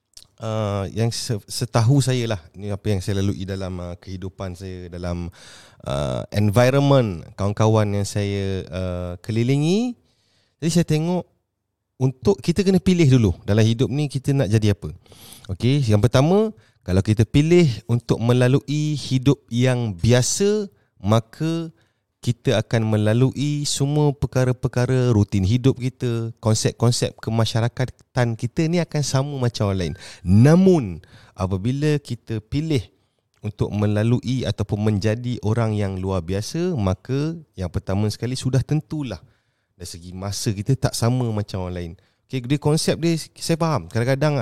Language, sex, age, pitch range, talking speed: Indonesian, male, 30-49, 100-130 Hz, 135 wpm